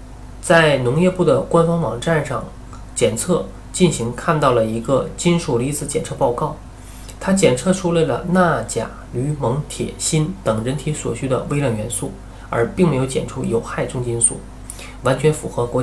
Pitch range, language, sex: 120-160 Hz, Chinese, male